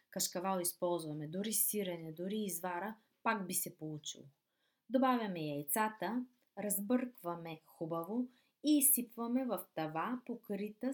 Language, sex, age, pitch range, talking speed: Bulgarian, female, 20-39, 170-255 Hz, 105 wpm